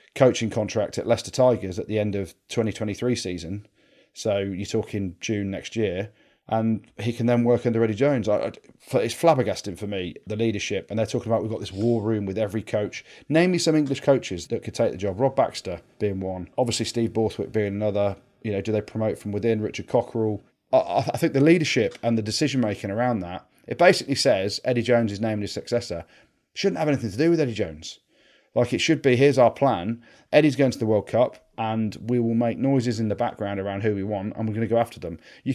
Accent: British